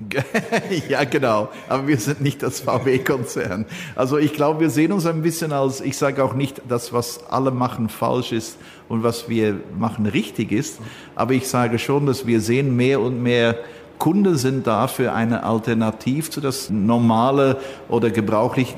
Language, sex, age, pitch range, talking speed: German, male, 50-69, 115-135 Hz, 170 wpm